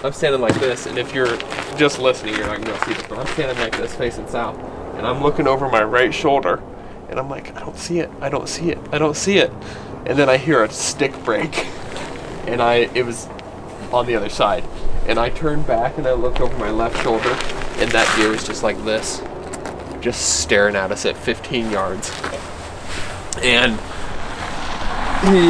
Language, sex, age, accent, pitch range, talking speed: English, male, 20-39, American, 100-130 Hz, 200 wpm